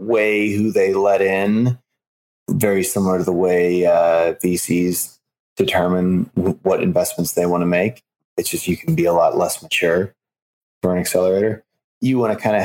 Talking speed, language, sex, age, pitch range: 170 wpm, English, male, 30-49, 90-105 Hz